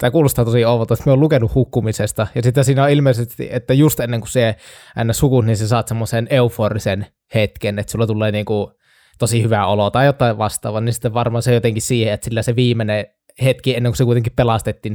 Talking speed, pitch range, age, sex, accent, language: 215 wpm, 110-130 Hz, 20-39, male, native, Finnish